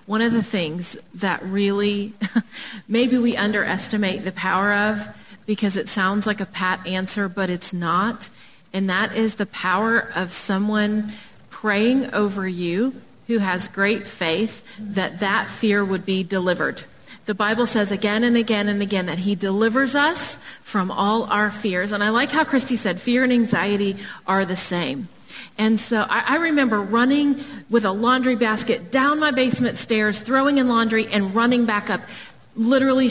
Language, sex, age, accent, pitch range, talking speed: English, female, 30-49, American, 200-240 Hz, 165 wpm